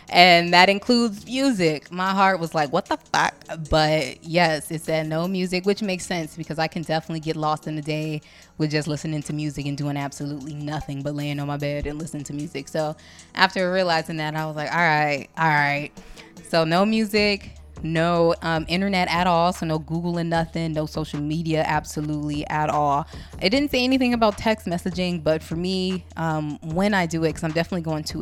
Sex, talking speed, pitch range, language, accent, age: female, 205 wpm, 150-175 Hz, English, American, 20-39